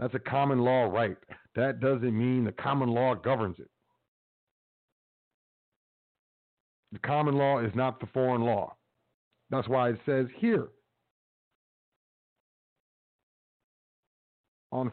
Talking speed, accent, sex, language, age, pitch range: 110 wpm, American, male, English, 50-69, 115-145 Hz